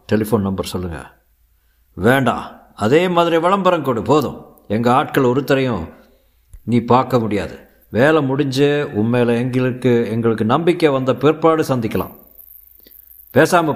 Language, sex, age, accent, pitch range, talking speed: Tamil, male, 50-69, native, 100-135 Hz, 110 wpm